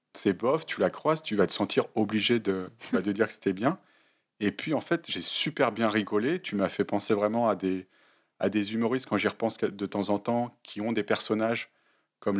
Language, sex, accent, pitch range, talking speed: French, male, French, 100-120 Hz, 225 wpm